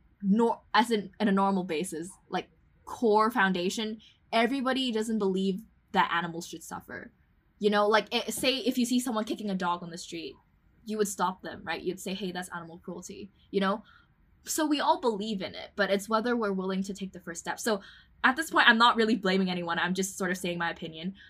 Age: 10-29